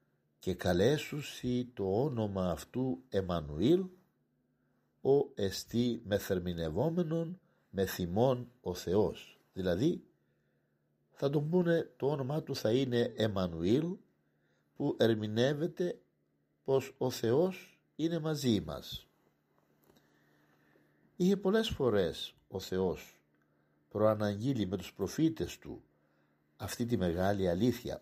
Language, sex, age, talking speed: Greek, male, 60-79, 100 wpm